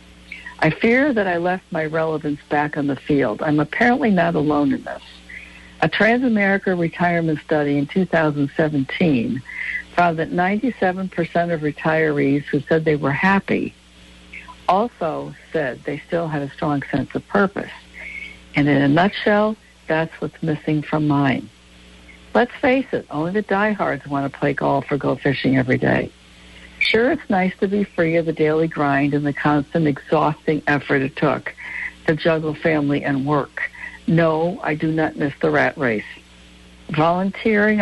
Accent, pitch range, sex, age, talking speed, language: American, 145-180 Hz, female, 60-79, 155 wpm, English